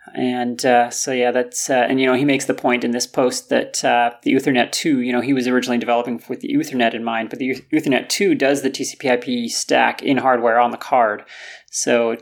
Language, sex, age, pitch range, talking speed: English, male, 30-49, 120-135 Hz, 230 wpm